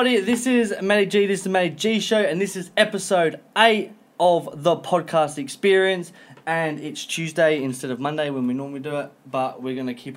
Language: English